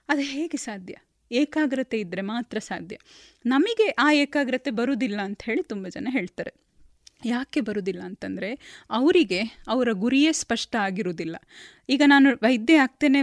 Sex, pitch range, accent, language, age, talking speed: female, 215-290 Hz, native, Kannada, 20-39, 125 wpm